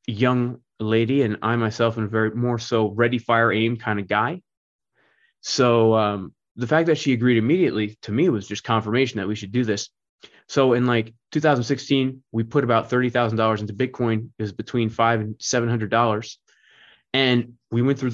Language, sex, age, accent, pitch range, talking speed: English, male, 20-39, American, 110-125 Hz, 185 wpm